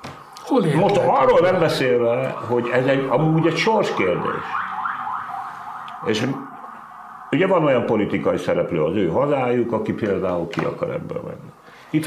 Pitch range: 100-135 Hz